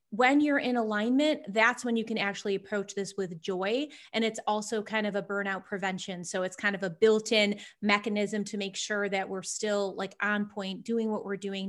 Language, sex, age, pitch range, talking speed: English, female, 30-49, 200-240 Hz, 210 wpm